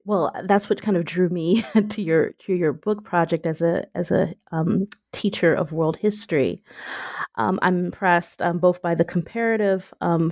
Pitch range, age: 165-200 Hz, 30-49